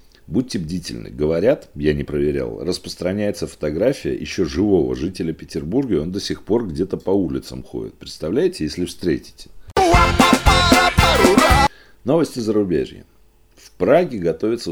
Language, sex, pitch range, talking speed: Russian, male, 75-110 Hz, 120 wpm